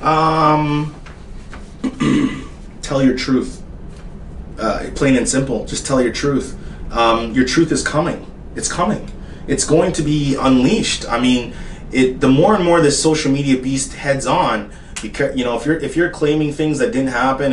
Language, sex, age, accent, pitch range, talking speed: English, male, 20-39, American, 130-155 Hz, 170 wpm